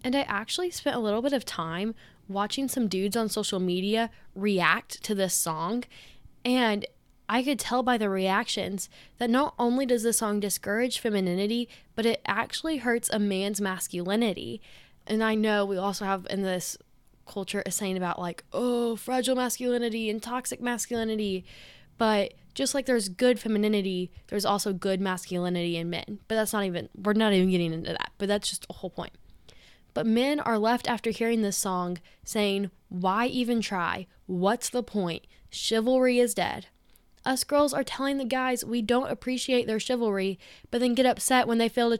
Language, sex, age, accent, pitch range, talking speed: English, female, 10-29, American, 195-250 Hz, 180 wpm